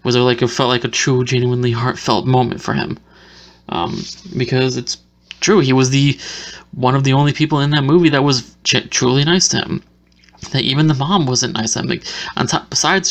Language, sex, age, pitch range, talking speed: English, male, 20-39, 125-155 Hz, 215 wpm